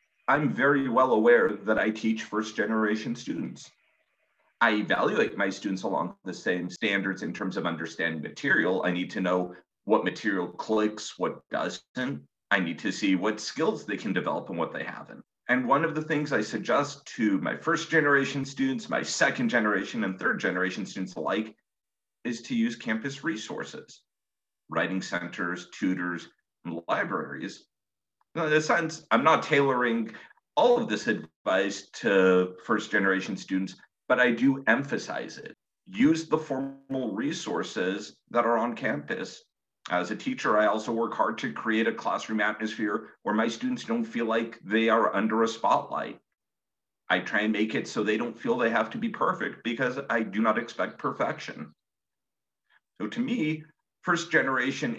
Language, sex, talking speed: English, male, 155 wpm